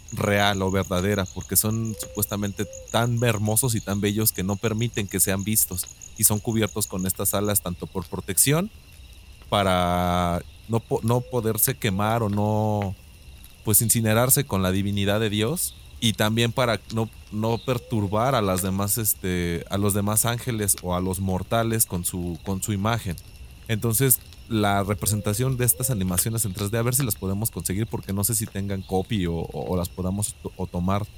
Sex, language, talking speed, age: male, Spanish, 175 wpm, 30-49